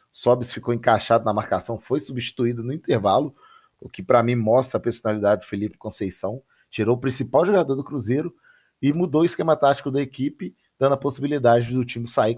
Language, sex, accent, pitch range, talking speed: Portuguese, male, Brazilian, 110-130 Hz, 185 wpm